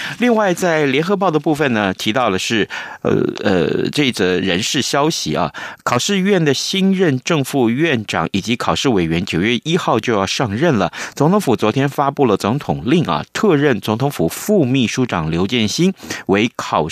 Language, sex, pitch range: Chinese, male, 100-145 Hz